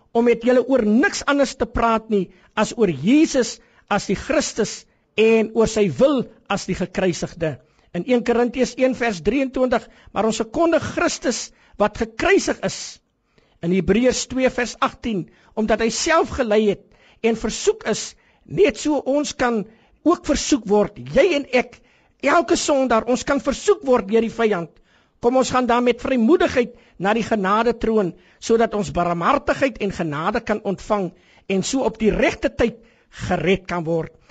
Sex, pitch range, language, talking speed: male, 190-260 Hz, French, 170 wpm